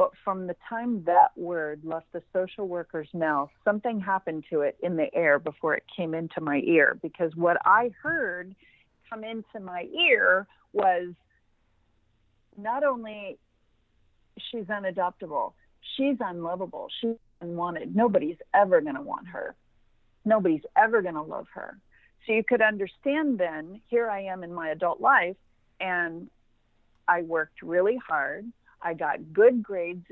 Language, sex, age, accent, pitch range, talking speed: English, female, 50-69, American, 165-220 Hz, 145 wpm